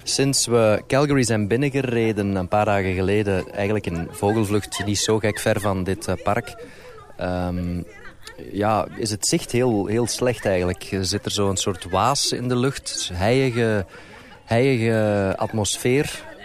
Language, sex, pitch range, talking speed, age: Dutch, male, 100-125 Hz, 140 wpm, 30-49